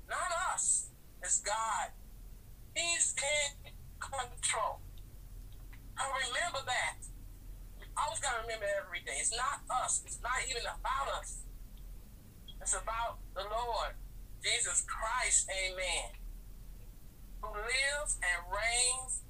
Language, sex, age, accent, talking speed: English, male, 50-69, American, 110 wpm